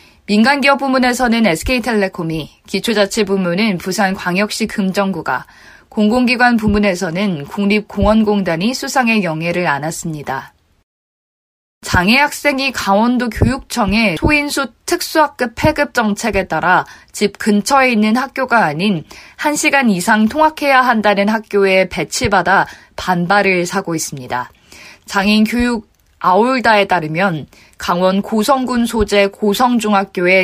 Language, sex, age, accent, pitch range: Korean, female, 20-39, native, 185-240 Hz